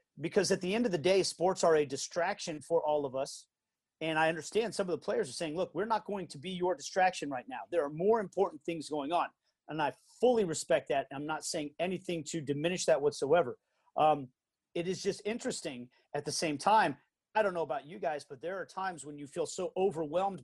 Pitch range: 155-200 Hz